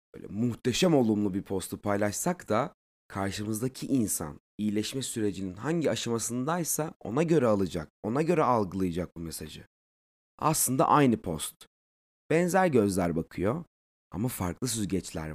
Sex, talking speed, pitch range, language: male, 115 wpm, 90-145 Hz, Turkish